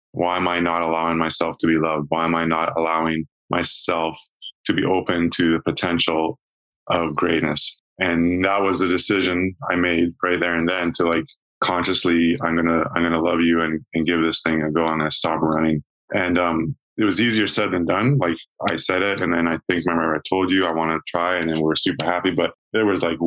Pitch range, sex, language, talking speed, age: 80-85 Hz, male, English, 225 wpm, 20-39